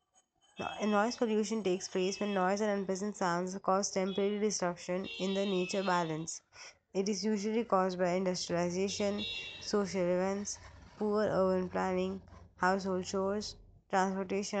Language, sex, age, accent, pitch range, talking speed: English, female, 20-39, Indian, 180-205 Hz, 125 wpm